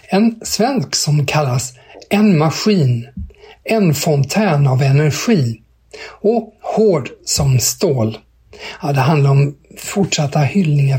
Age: 60-79